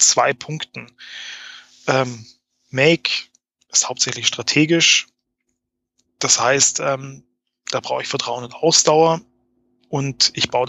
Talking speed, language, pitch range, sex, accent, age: 95 wpm, German, 125-150 Hz, male, German, 20-39